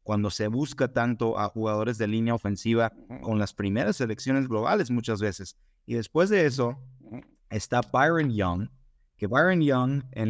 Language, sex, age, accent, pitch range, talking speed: Spanish, male, 30-49, Mexican, 105-130 Hz, 155 wpm